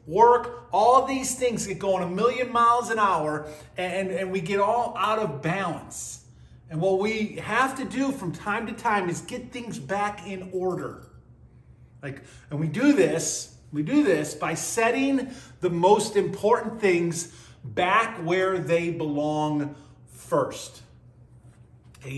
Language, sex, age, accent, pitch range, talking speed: English, male, 30-49, American, 165-240 Hz, 150 wpm